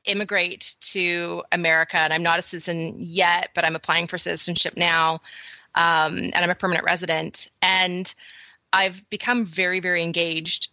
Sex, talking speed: female, 150 wpm